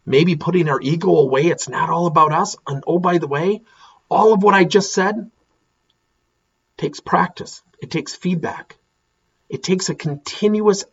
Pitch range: 170-255 Hz